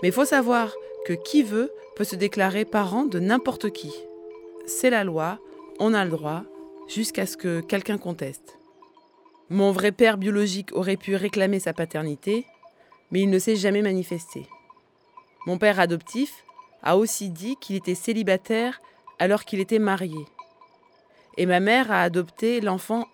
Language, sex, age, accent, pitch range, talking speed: French, female, 20-39, French, 185-245 Hz, 155 wpm